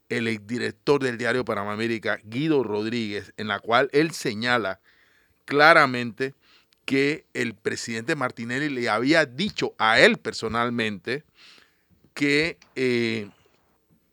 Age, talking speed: 40-59, 110 wpm